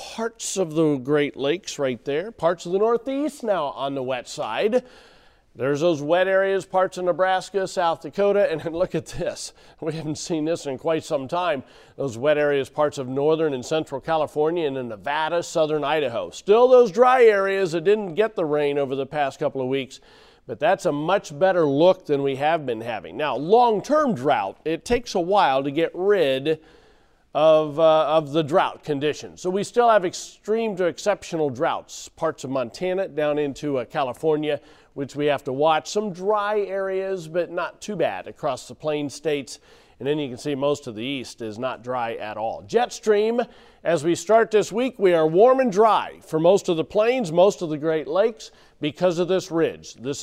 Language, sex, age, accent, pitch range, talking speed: English, male, 40-59, American, 150-195 Hz, 195 wpm